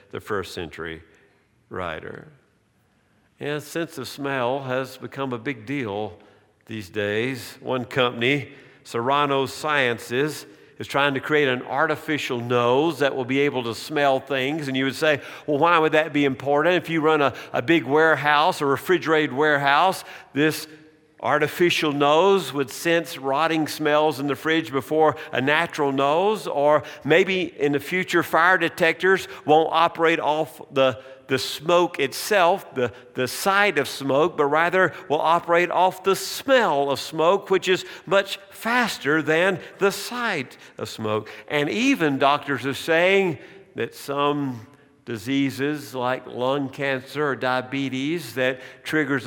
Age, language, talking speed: 50-69, English, 145 wpm